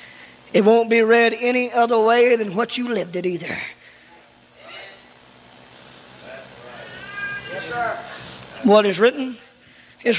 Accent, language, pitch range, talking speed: American, English, 225-270 Hz, 100 wpm